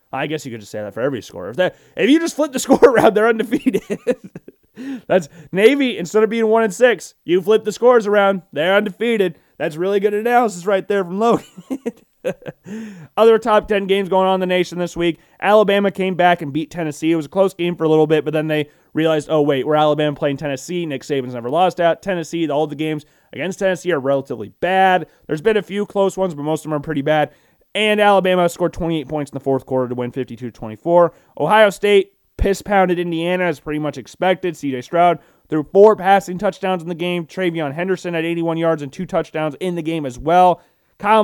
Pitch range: 155-200 Hz